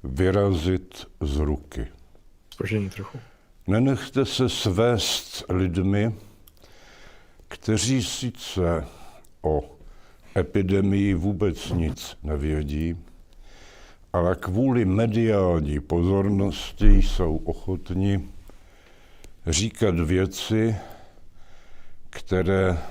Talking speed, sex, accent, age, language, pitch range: 60 wpm, male, native, 70-89, Czech, 80-100 Hz